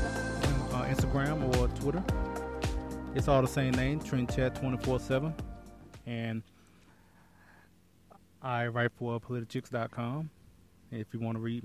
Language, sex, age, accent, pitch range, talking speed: English, male, 20-39, American, 115-130 Hz, 115 wpm